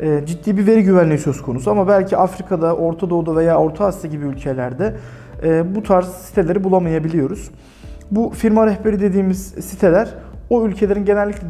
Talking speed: 155 wpm